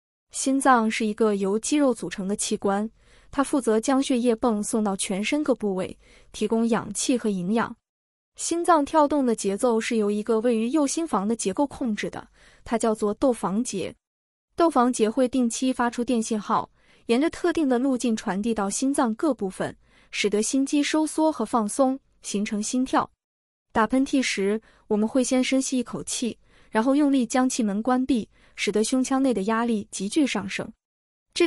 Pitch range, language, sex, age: 210-270 Hz, Chinese, female, 20-39